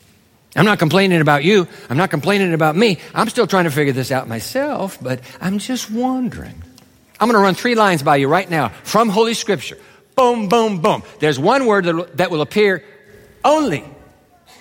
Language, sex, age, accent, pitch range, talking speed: English, male, 50-69, American, 170-230 Hz, 180 wpm